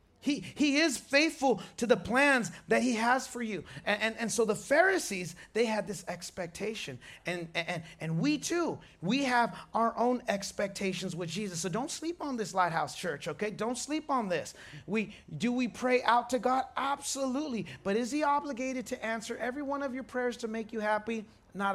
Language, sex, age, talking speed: English, male, 30-49, 195 wpm